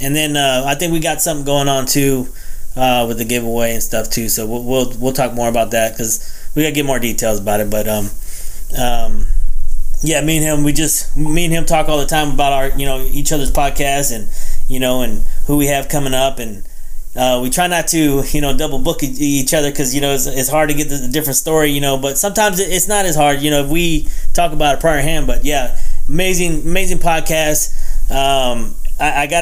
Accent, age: American, 20-39